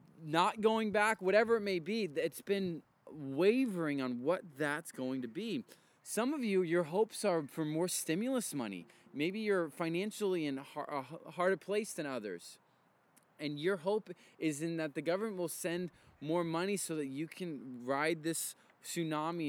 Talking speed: 165 wpm